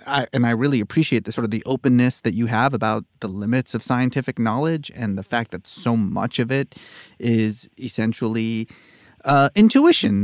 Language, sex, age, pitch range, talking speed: English, male, 30-49, 115-145 Hz, 175 wpm